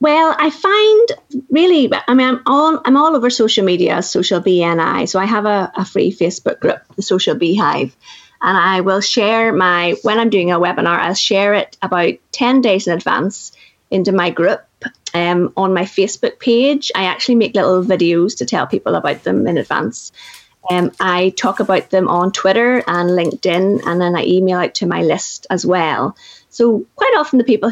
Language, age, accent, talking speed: English, 30-49, British, 190 wpm